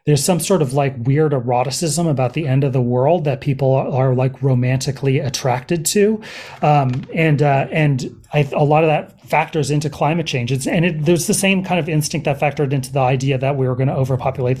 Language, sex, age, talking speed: English, male, 30-49, 220 wpm